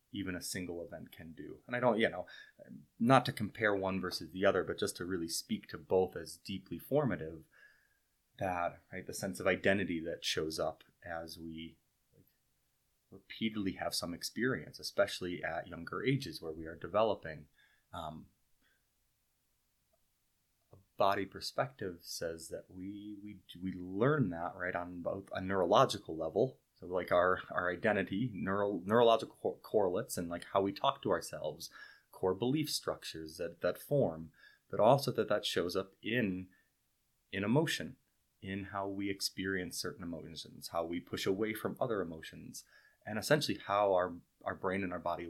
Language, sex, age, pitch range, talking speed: English, male, 30-49, 85-100 Hz, 160 wpm